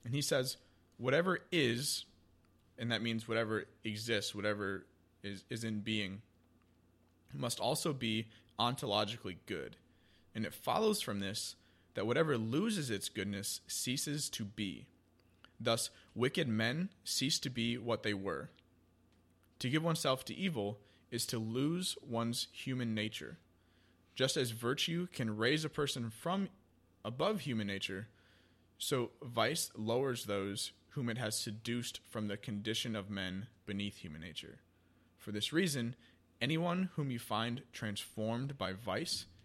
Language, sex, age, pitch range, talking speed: English, male, 20-39, 95-120 Hz, 135 wpm